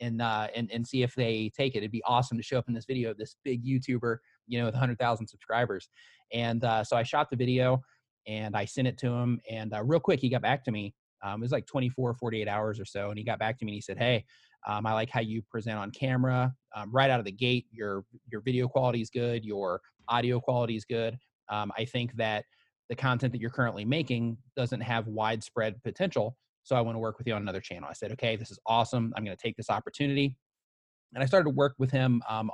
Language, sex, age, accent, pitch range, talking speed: English, male, 30-49, American, 110-125 Hz, 255 wpm